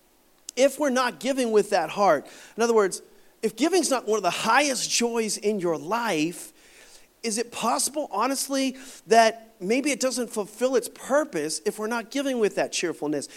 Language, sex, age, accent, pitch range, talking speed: English, male, 40-59, American, 175-260 Hz, 175 wpm